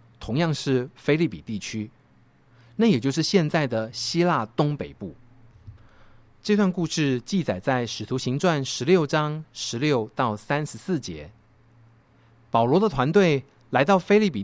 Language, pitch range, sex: Chinese, 115-175 Hz, male